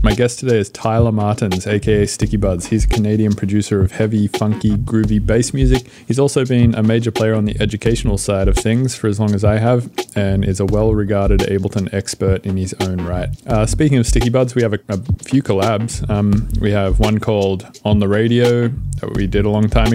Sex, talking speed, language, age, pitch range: male, 215 wpm, English, 20-39, 100-115 Hz